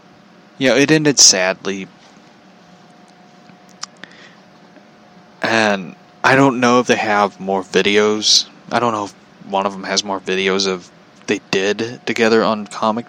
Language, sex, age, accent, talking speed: English, male, 20-39, American, 140 wpm